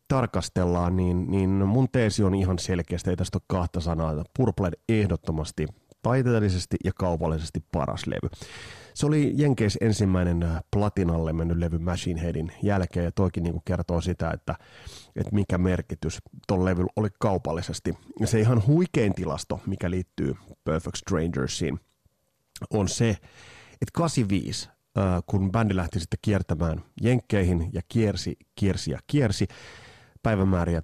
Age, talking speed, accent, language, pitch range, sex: 30-49, 130 wpm, native, Finnish, 85-110 Hz, male